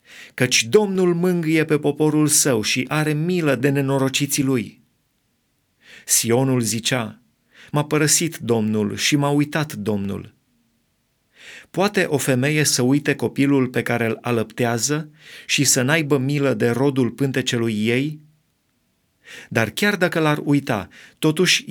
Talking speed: 125 wpm